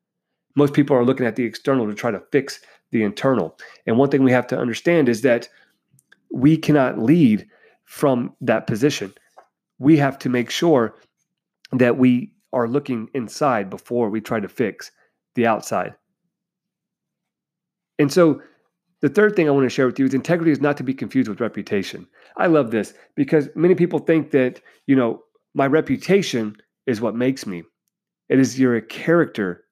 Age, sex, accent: 30-49, male, American